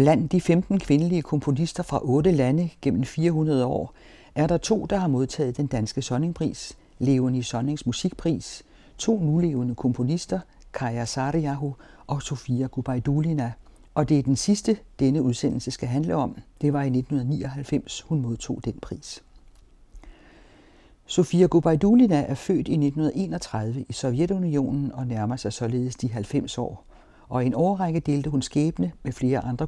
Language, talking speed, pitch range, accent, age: Danish, 150 wpm, 125-160 Hz, native, 60-79